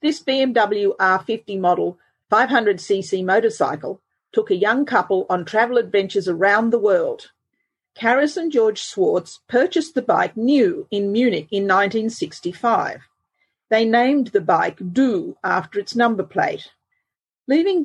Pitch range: 195-250 Hz